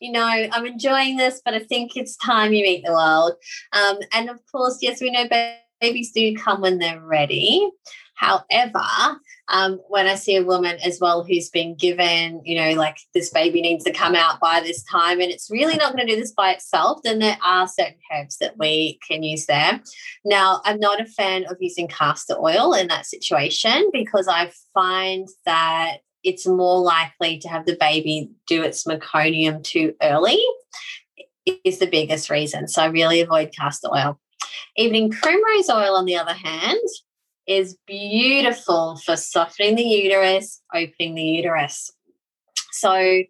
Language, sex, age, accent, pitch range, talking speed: English, female, 20-39, Australian, 170-240 Hz, 175 wpm